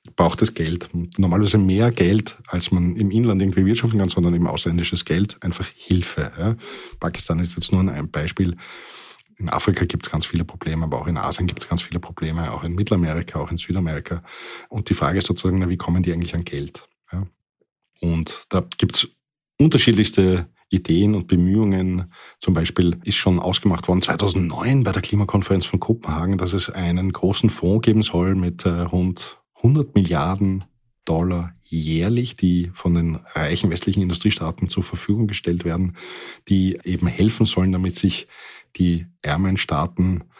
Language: German